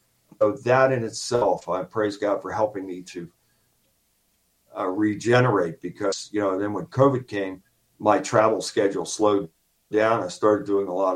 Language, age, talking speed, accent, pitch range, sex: English, 50-69, 160 wpm, American, 95-125 Hz, male